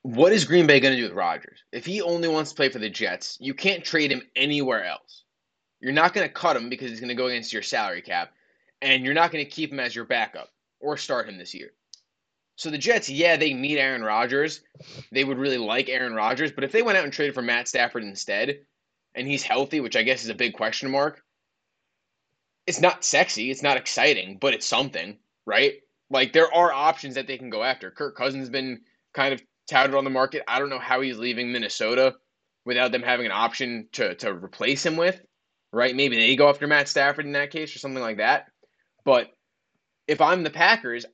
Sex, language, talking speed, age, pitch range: male, English, 225 wpm, 20-39, 125-150 Hz